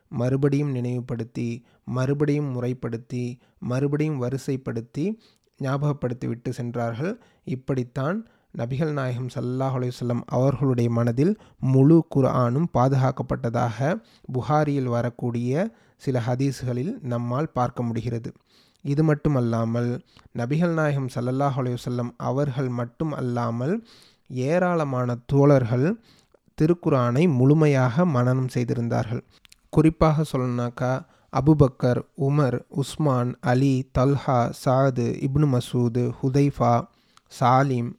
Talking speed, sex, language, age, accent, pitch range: 80 wpm, male, Tamil, 30-49, native, 125-145 Hz